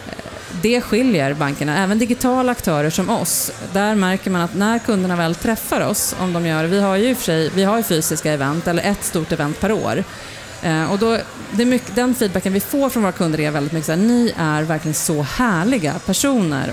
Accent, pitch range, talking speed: Norwegian, 165-230 Hz, 210 wpm